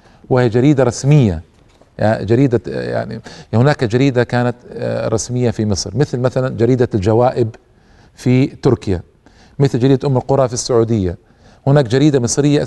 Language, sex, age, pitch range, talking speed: Arabic, male, 40-59, 115-150 Hz, 125 wpm